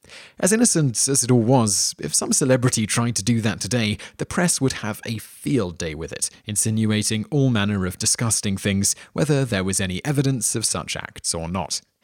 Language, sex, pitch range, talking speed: English, male, 100-125 Hz, 195 wpm